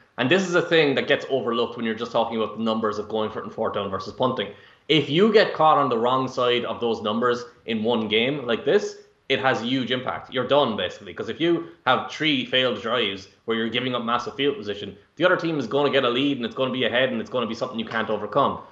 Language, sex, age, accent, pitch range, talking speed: English, male, 20-39, Irish, 110-140 Hz, 275 wpm